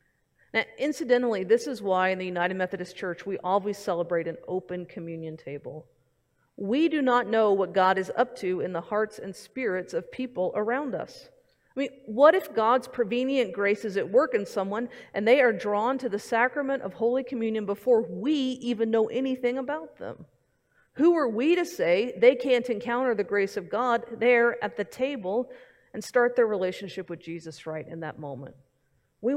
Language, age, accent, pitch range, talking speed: English, 40-59, American, 175-245 Hz, 185 wpm